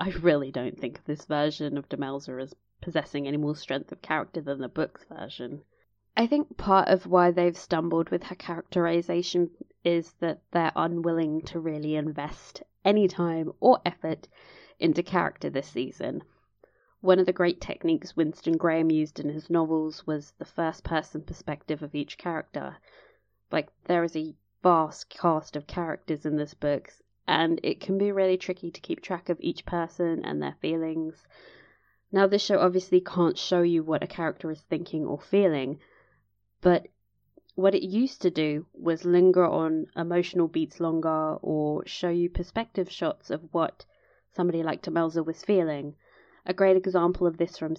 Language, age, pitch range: English, 20-39, 155-180 Hz